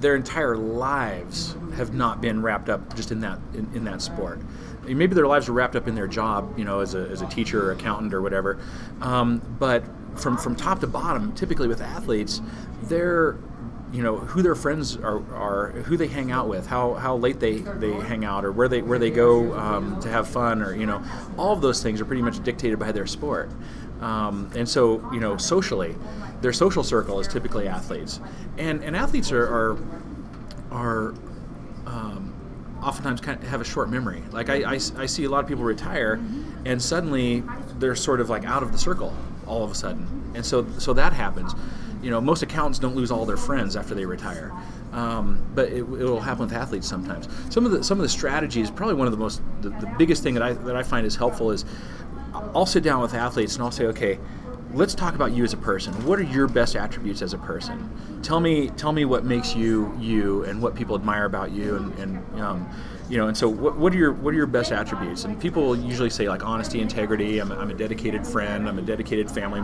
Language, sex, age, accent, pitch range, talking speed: English, male, 30-49, American, 105-130 Hz, 220 wpm